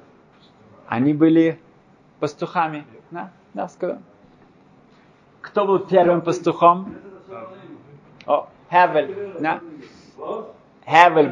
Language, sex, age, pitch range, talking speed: Russian, male, 20-39, 120-155 Hz, 70 wpm